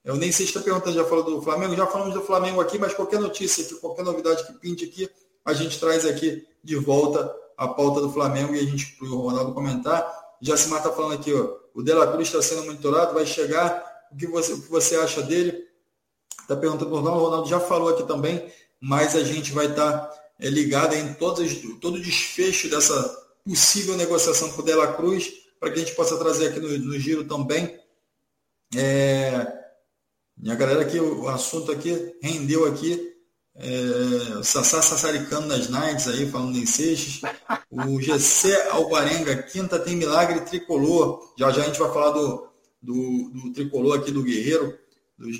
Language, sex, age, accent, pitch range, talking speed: Portuguese, male, 20-39, Brazilian, 135-170 Hz, 185 wpm